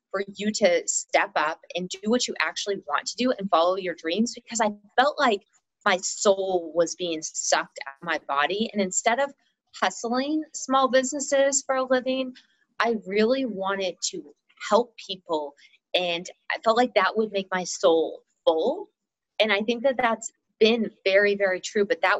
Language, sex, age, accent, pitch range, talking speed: English, female, 20-39, American, 180-245 Hz, 175 wpm